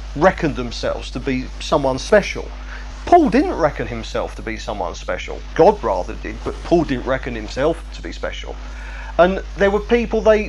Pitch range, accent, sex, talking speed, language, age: 140-200 Hz, British, male, 170 wpm, English, 40-59